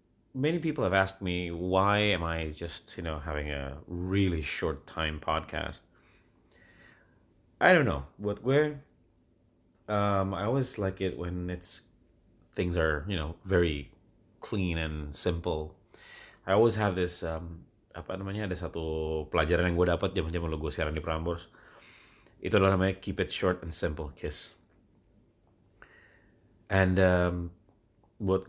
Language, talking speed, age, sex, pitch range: English, 135 wpm, 30-49, male, 85-105 Hz